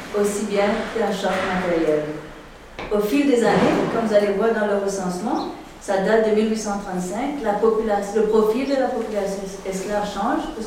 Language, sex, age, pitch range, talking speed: French, female, 40-59, 190-215 Hz, 170 wpm